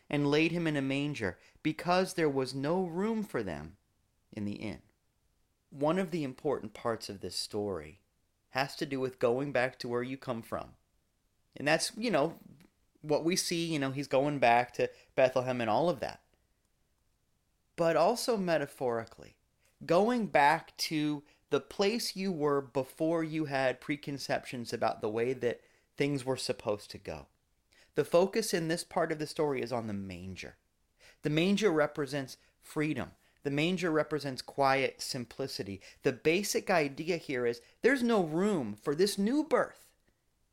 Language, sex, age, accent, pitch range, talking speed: English, male, 30-49, American, 120-170 Hz, 160 wpm